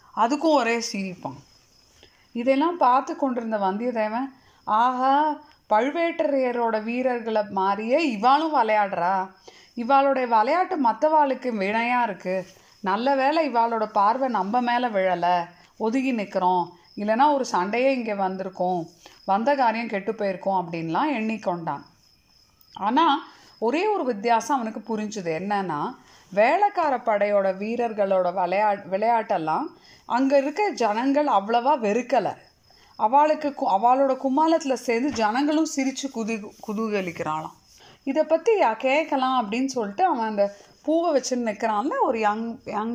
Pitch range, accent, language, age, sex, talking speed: 200-275 Hz, native, Tamil, 30-49, female, 105 wpm